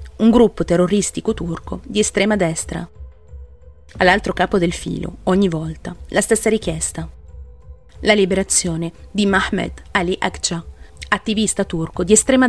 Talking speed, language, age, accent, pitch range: 125 wpm, Italian, 30-49, native, 170-230 Hz